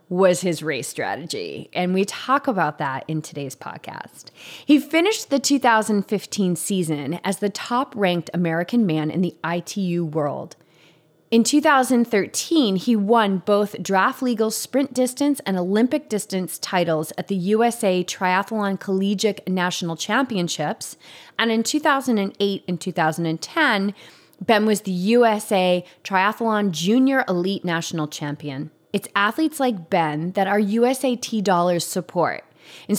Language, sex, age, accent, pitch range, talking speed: English, female, 30-49, American, 165-220 Hz, 125 wpm